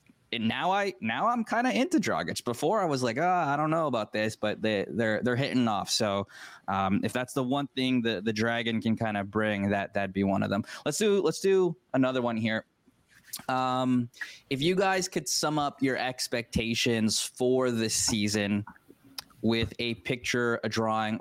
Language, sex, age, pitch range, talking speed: English, male, 20-39, 110-135 Hz, 195 wpm